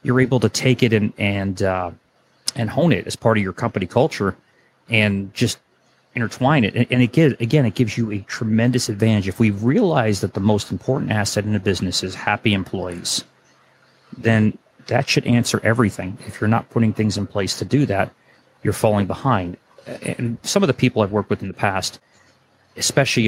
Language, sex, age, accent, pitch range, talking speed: English, male, 30-49, American, 105-125 Hz, 195 wpm